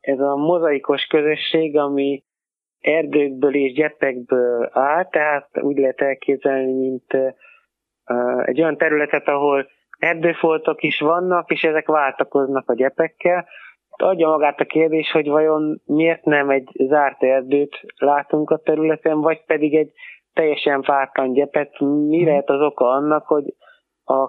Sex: male